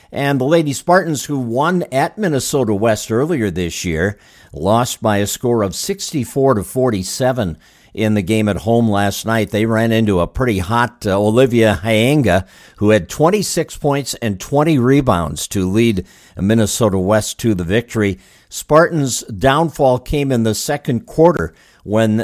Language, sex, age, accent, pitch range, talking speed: English, male, 50-69, American, 100-130 Hz, 150 wpm